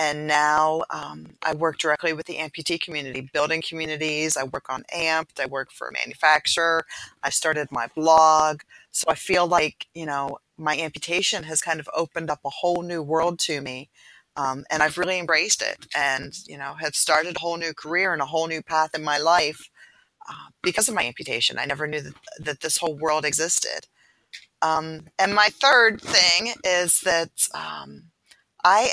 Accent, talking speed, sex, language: American, 185 wpm, female, English